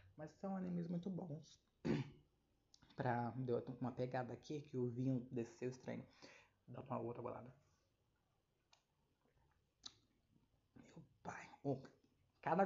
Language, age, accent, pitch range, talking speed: Portuguese, 20-39, Brazilian, 125-175 Hz, 110 wpm